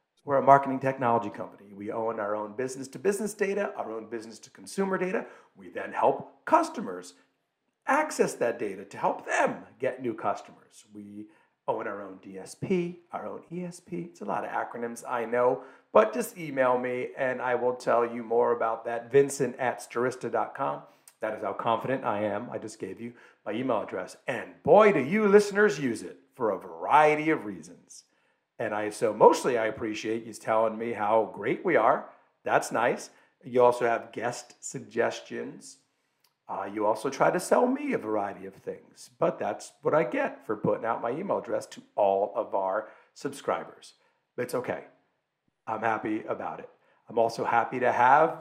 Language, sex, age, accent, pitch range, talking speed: English, male, 40-59, American, 110-160 Hz, 180 wpm